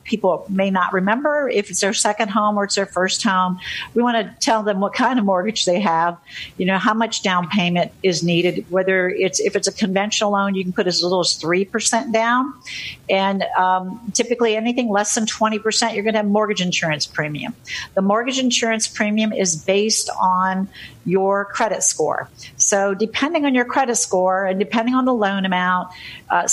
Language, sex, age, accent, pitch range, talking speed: English, female, 50-69, American, 175-215 Hz, 195 wpm